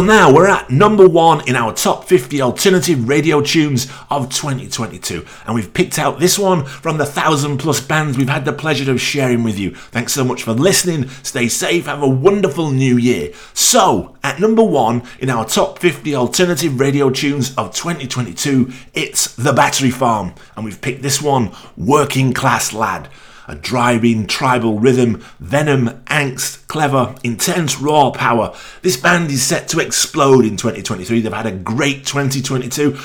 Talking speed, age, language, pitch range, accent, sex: 170 wpm, 30-49, English, 120-150 Hz, British, male